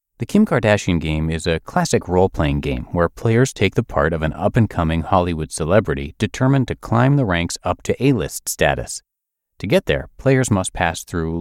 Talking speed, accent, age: 185 wpm, American, 30-49